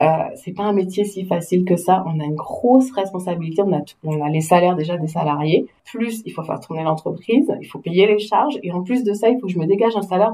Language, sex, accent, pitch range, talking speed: French, female, French, 170-205 Hz, 280 wpm